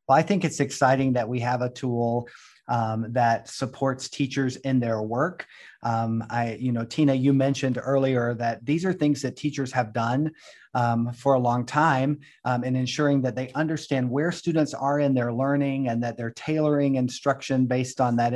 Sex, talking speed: male, 190 wpm